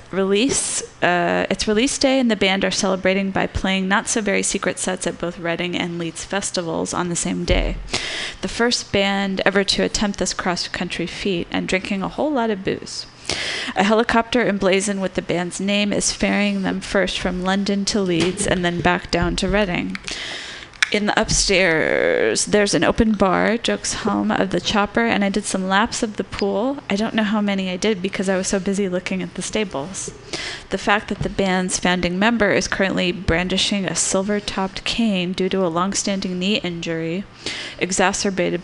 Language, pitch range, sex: English, 180-205 Hz, female